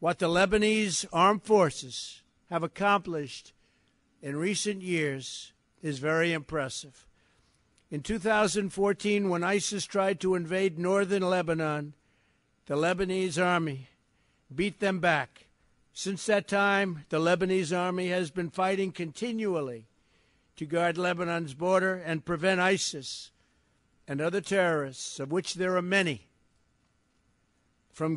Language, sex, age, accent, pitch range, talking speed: English, male, 60-79, American, 150-190 Hz, 115 wpm